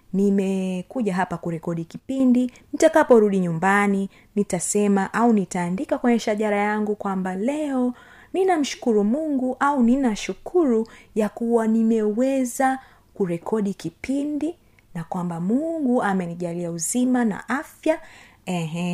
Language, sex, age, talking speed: Swahili, female, 30-49, 100 wpm